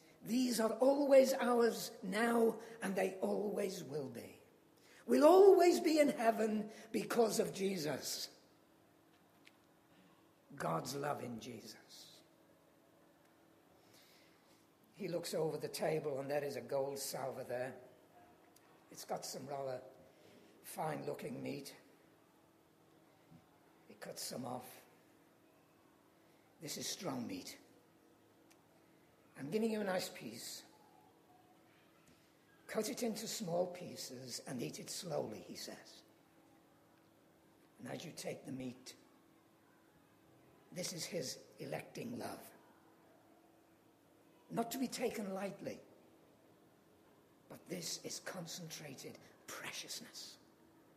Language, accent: English, British